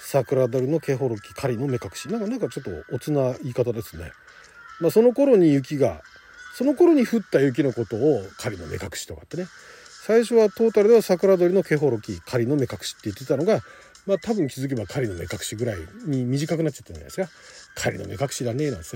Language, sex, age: Japanese, male, 40-59